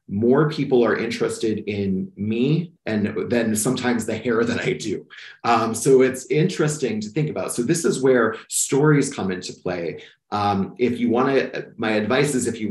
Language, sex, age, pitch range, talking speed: English, male, 30-49, 105-130 Hz, 185 wpm